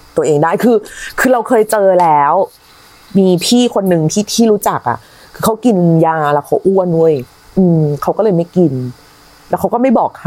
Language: Thai